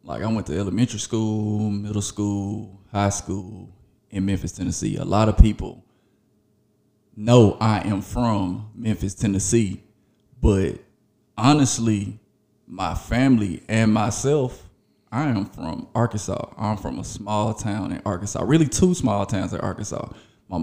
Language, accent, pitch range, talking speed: English, American, 95-110 Hz, 135 wpm